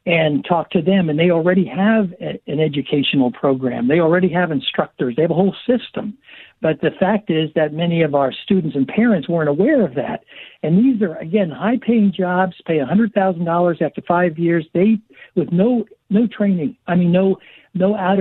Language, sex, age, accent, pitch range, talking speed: English, male, 60-79, American, 150-190 Hz, 190 wpm